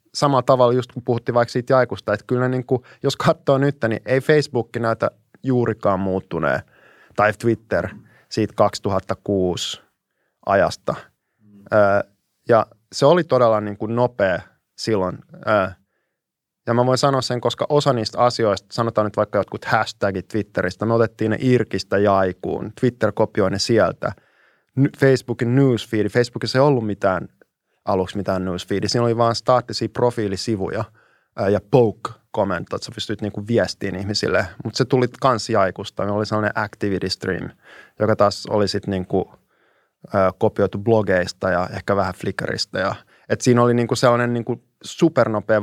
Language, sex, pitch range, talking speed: Finnish, male, 105-125 Hz, 145 wpm